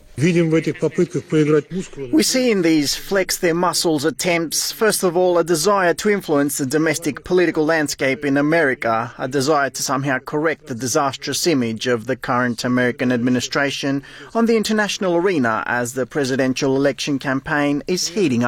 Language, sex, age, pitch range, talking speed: Arabic, male, 30-49, 120-160 Hz, 140 wpm